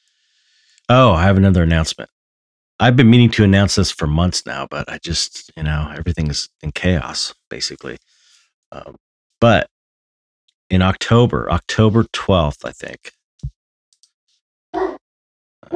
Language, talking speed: English, 120 wpm